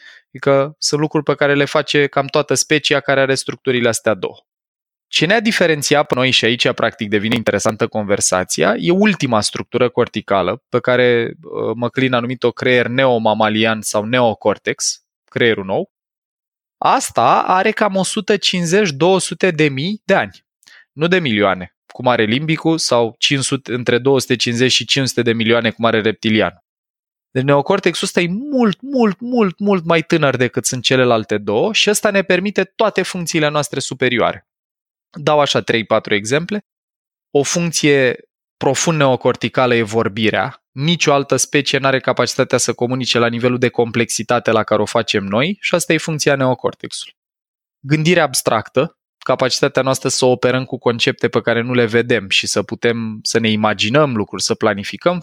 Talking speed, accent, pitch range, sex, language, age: 155 wpm, native, 115-160 Hz, male, Romanian, 20-39